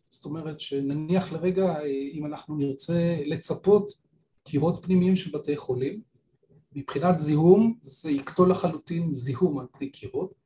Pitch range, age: 145-185 Hz, 40-59